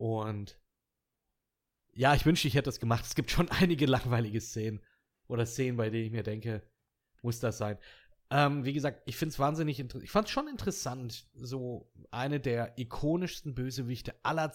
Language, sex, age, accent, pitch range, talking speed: German, male, 30-49, German, 105-135 Hz, 175 wpm